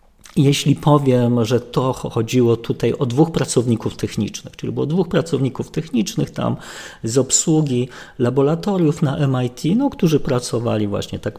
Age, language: 40-59, Polish